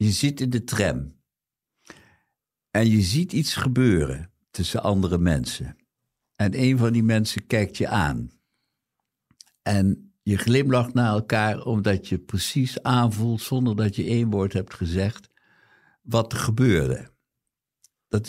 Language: Dutch